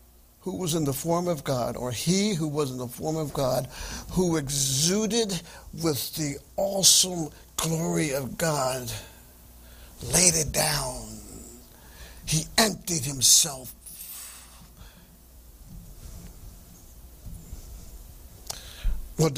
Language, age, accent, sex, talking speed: English, 60-79, American, male, 95 wpm